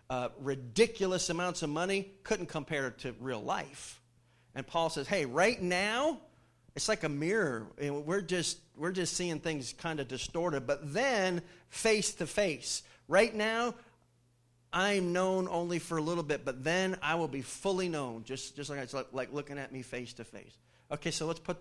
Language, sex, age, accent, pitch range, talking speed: English, male, 40-59, American, 120-160 Hz, 190 wpm